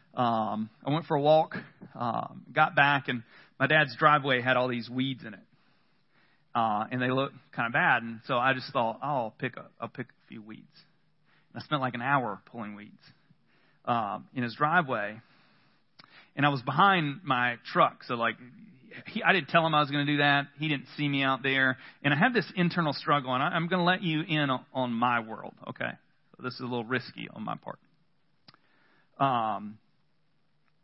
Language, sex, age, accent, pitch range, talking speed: English, male, 40-59, American, 125-165 Hz, 205 wpm